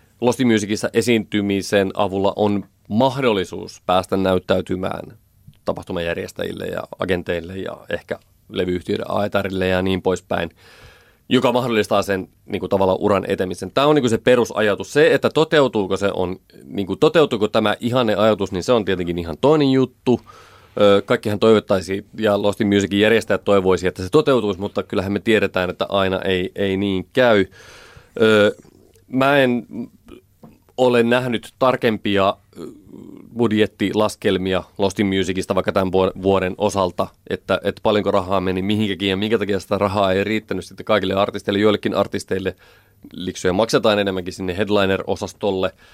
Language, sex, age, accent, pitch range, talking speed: Finnish, male, 30-49, native, 95-110 Hz, 135 wpm